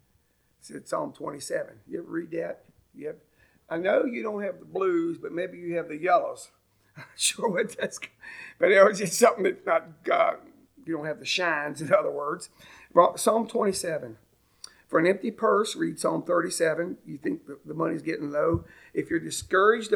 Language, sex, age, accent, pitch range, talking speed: English, male, 50-69, American, 175-275 Hz, 185 wpm